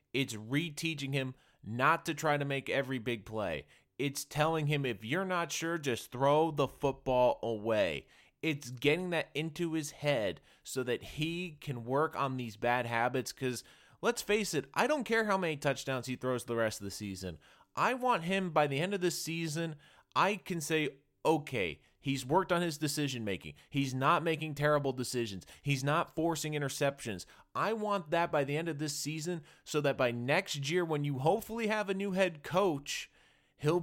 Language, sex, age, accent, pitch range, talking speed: English, male, 30-49, American, 135-175 Hz, 185 wpm